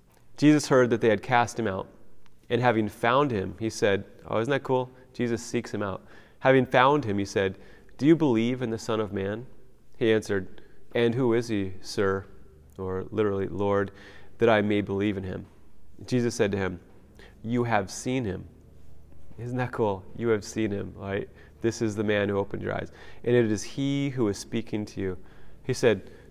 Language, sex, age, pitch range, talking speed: English, male, 30-49, 100-120 Hz, 195 wpm